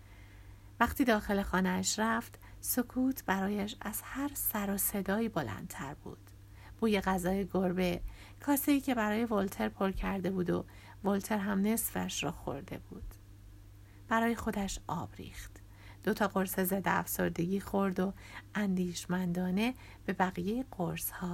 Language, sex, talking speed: Persian, female, 125 wpm